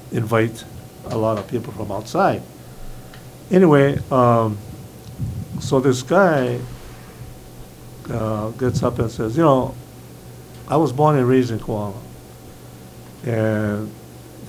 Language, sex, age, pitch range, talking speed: English, male, 60-79, 115-140 Hz, 110 wpm